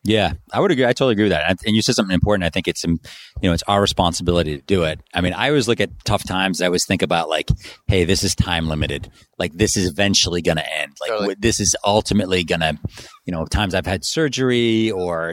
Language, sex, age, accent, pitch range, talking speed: English, male, 30-49, American, 85-100 Hz, 245 wpm